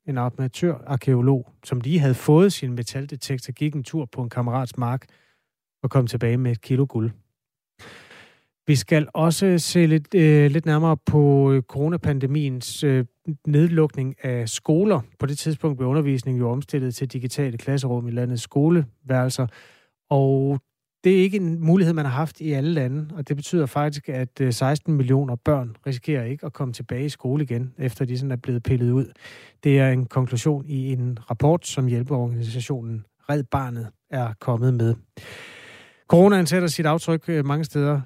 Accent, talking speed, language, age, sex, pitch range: native, 165 wpm, Danish, 30-49, male, 125-150 Hz